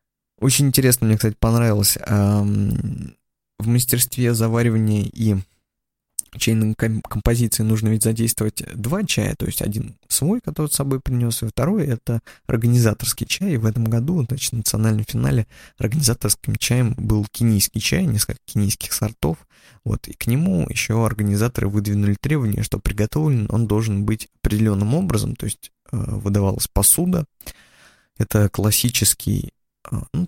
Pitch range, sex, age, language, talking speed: 105-125 Hz, male, 20-39, Russian, 135 wpm